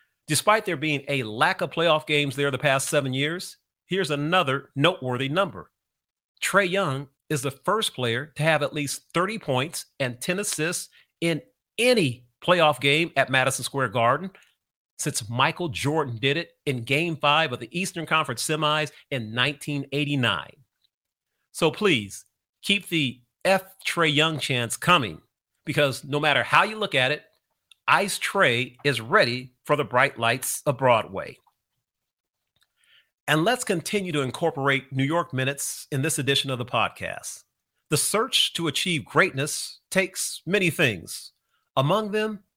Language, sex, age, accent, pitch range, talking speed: English, male, 40-59, American, 130-165 Hz, 150 wpm